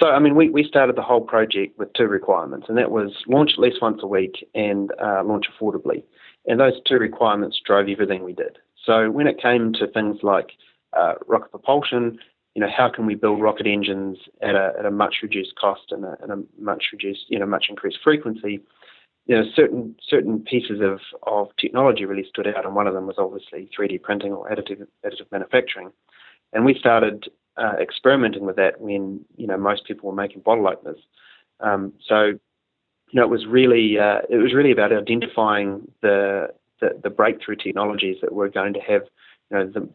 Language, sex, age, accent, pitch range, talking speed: English, male, 30-49, Australian, 100-120 Hz, 200 wpm